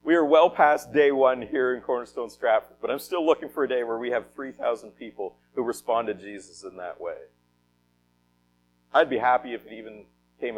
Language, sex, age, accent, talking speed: English, male, 50-69, American, 205 wpm